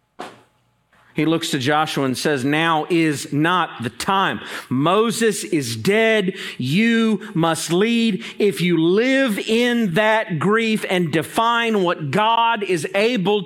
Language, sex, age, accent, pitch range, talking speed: English, male, 40-59, American, 155-220 Hz, 130 wpm